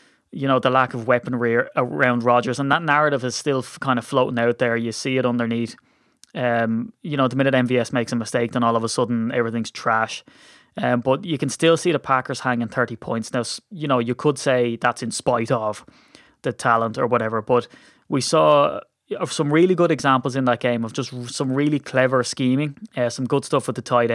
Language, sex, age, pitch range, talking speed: English, male, 20-39, 115-135 Hz, 215 wpm